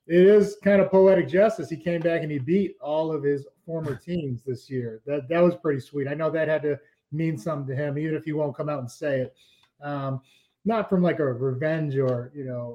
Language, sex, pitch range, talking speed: English, male, 135-165 Hz, 240 wpm